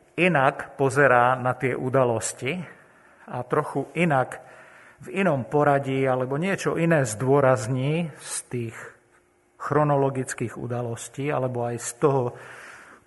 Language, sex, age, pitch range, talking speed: Slovak, male, 50-69, 120-140 Hz, 105 wpm